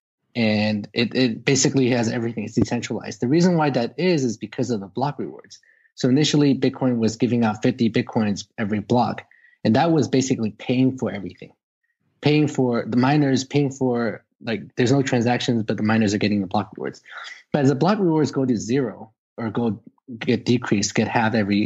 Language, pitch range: English, 110-130 Hz